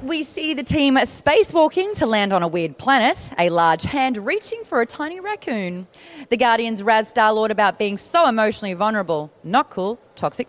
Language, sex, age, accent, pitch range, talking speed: English, female, 20-39, Australian, 215-310 Hz, 175 wpm